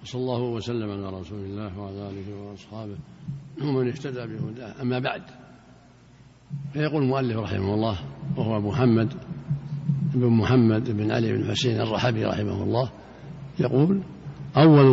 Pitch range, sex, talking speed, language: 115-140 Hz, male, 125 wpm, Arabic